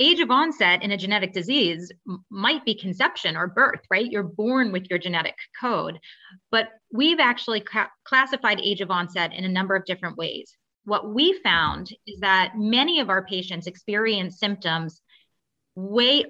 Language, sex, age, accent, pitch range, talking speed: English, female, 30-49, American, 185-230 Hz, 160 wpm